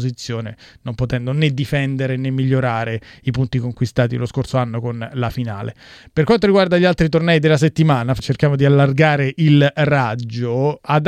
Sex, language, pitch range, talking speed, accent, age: male, Italian, 120-150 Hz, 155 wpm, native, 30-49